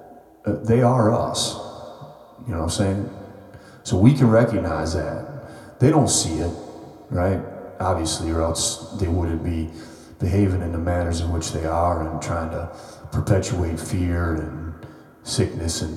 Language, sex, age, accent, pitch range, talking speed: English, male, 30-49, American, 80-120 Hz, 155 wpm